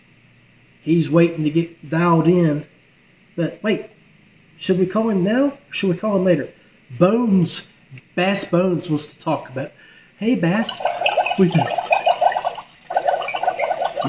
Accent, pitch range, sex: American, 165-230 Hz, male